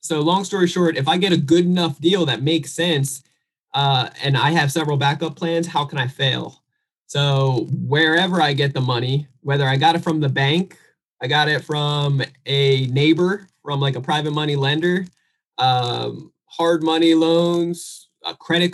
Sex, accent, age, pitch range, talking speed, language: male, American, 20-39, 135-165 Hz, 180 wpm, English